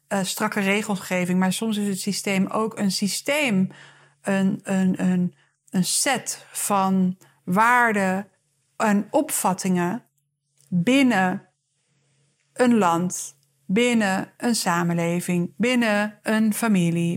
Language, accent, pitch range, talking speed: Dutch, Dutch, 180-220 Hz, 100 wpm